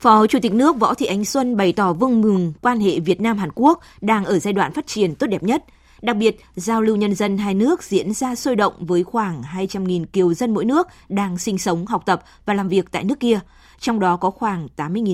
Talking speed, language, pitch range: 240 wpm, Vietnamese, 180-230 Hz